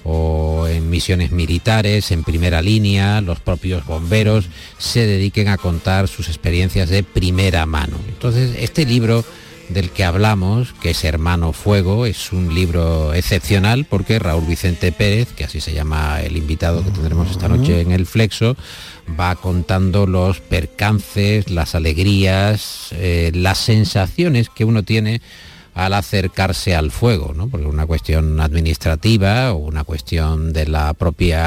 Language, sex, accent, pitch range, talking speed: Spanish, male, Spanish, 85-100 Hz, 145 wpm